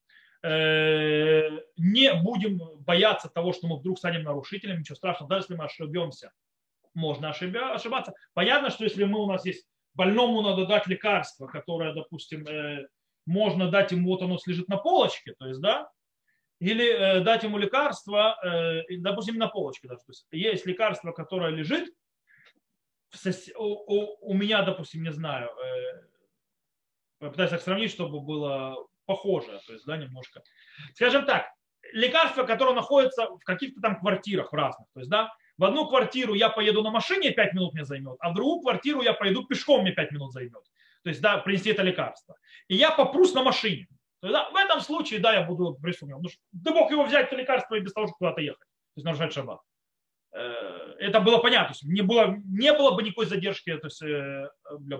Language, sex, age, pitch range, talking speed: Russian, male, 30-49, 160-220 Hz, 170 wpm